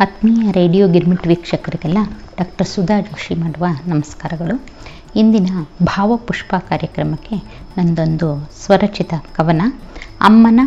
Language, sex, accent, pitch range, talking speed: Kannada, female, native, 170-215 Hz, 90 wpm